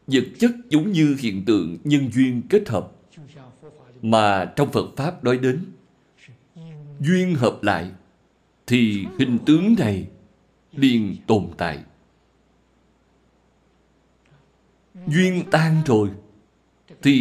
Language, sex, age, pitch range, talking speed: Vietnamese, male, 60-79, 120-175 Hz, 105 wpm